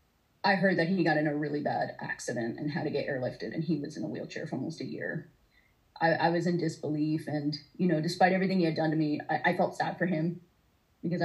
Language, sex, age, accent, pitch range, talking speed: English, female, 30-49, American, 150-185 Hz, 250 wpm